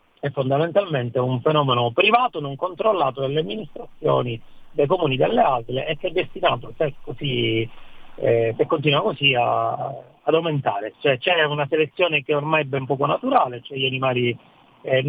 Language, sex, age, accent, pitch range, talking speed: Italian, male, 40-59, native, 120-150 Hz, 165 wpm